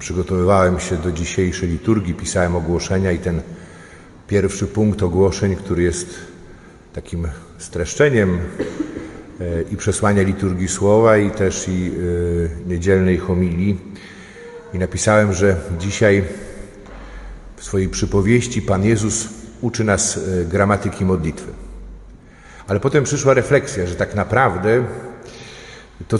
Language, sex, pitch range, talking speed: Polish, male, 95-125 Hz, 105 wpm